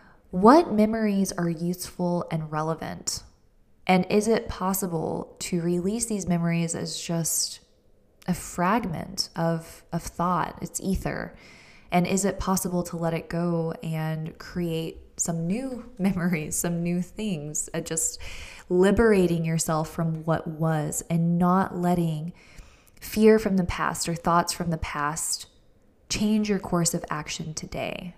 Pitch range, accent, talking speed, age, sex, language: 165-195 Hz, American, 135 wpm, 20-39, female, English